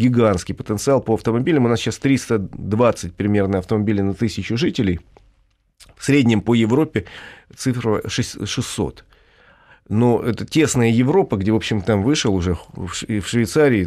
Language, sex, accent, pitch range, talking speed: Russian, male, native, 95-125 Hz, 135 wpm